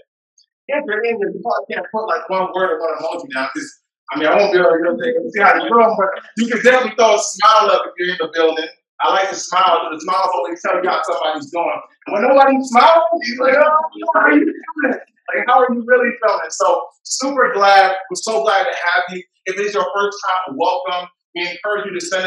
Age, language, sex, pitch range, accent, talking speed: 30-49, English, male, 170-250 Hz, American, 230 wpm